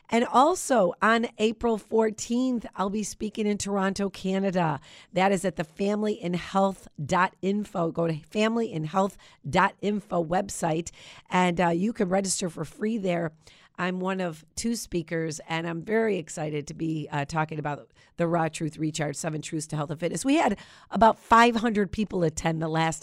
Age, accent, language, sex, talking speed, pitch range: 40-59, American, English, female, 155 wpm, 160-205 Hz